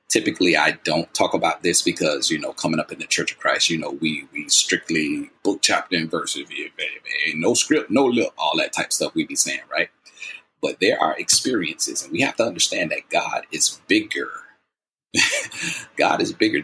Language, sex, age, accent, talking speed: English, male, 30-49, American, 200 wpm